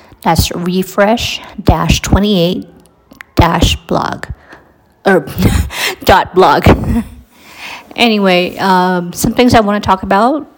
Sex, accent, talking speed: female, American, 80 wpm